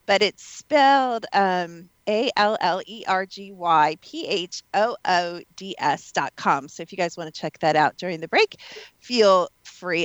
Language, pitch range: English, 170-230 Hz